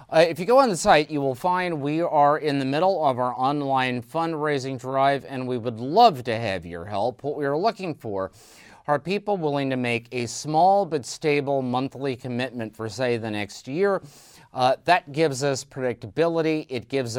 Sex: male